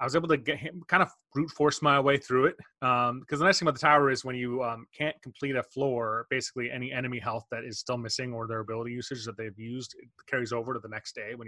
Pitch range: 115-140 Hz